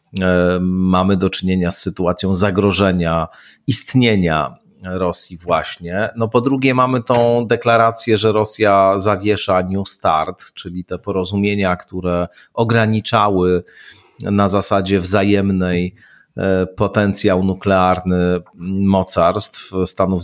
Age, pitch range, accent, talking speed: 40-59, 90-110 Hz, native, 95 wpm